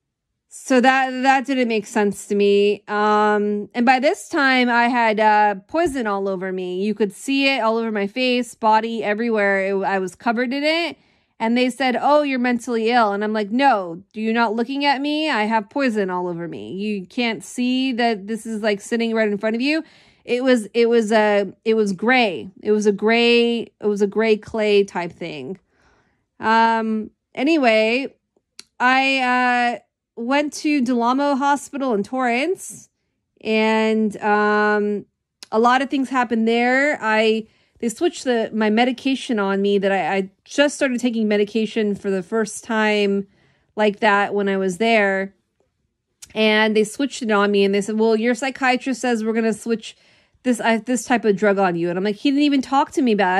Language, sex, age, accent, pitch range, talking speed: English, female, 30-49, American, 210-250 Hz, 190 wpm